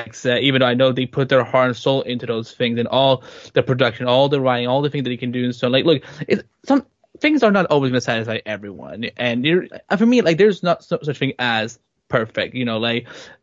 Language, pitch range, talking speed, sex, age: English, 125-160 Hz, 260 wpm, male, 10-29